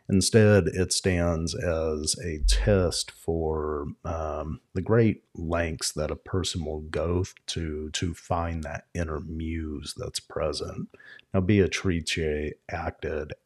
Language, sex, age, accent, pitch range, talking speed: English, male, 40-59, American, 75-90 Hz, 125 wpm